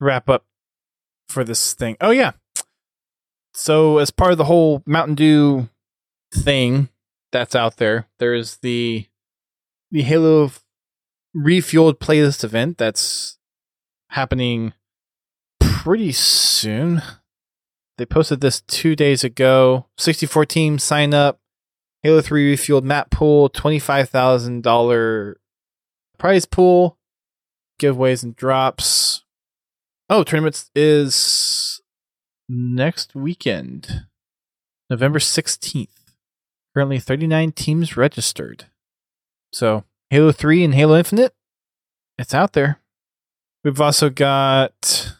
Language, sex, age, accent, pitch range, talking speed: English, male, 20-39, American, 120-155 Hz, 100 wpm